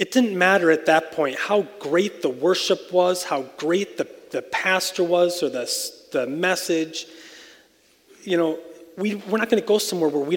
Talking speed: 185 wpm